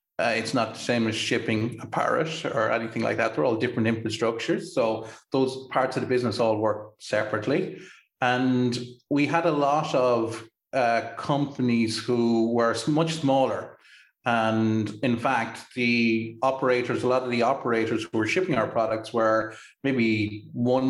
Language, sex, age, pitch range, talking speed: English, male, 30-49, 110-130 Hz, 160 wpm